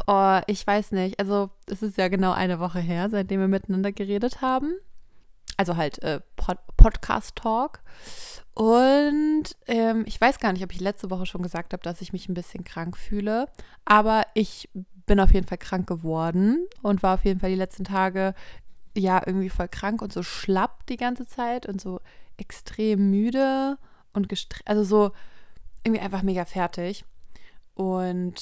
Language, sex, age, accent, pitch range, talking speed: German, female, 20-39, German, 185-225 Hz, 175 wpm